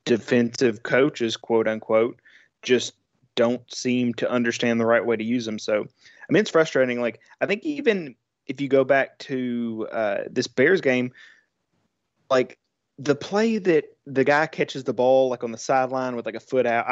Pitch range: 115-135 Hz